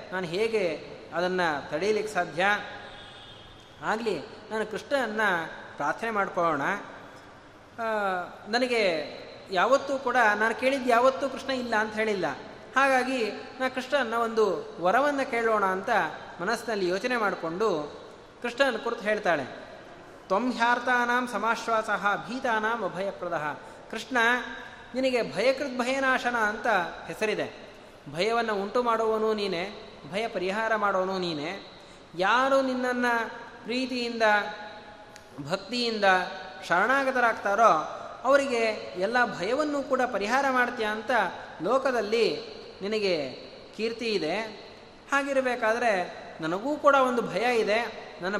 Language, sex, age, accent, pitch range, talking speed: Kannada, male, 30-49, native, 205-255 Hz, 90 wpm